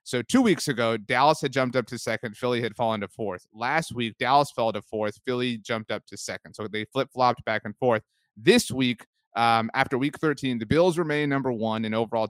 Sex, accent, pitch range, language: male, American, 120-150 Hz, English